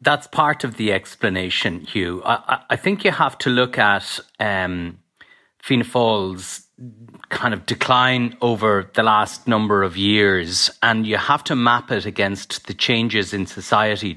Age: 30-49